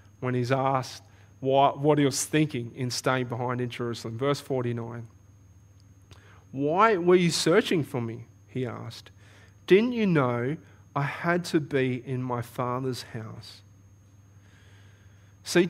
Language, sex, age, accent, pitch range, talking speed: English, male, 30-49, Australian, 110-160 Hz, 130 wpm